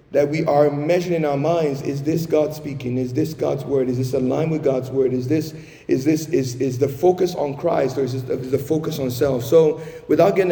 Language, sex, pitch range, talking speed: English, male, 135-160 Hz, 245 wpm